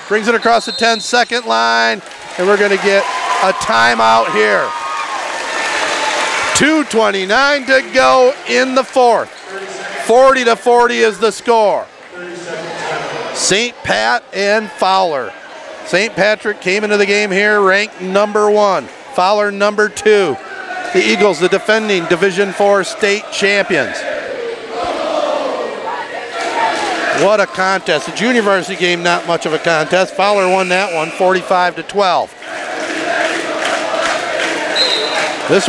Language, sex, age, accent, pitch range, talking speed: English, male, 50-69, American, 185-230 Hz, 120 wpm